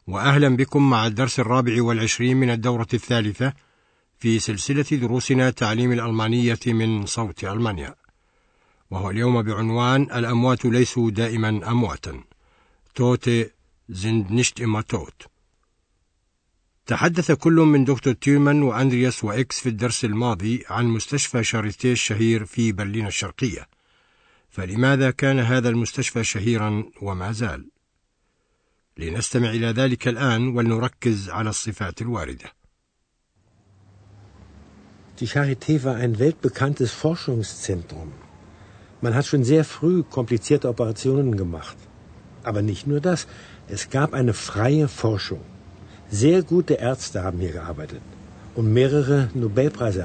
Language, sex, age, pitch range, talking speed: Arabic, male, 60-79, 105-130 Hz, 100 wpm